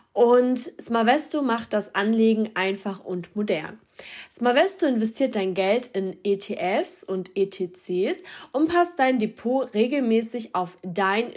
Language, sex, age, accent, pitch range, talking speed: German, female, 20-39, German, 200-245 Hz, 120 wpm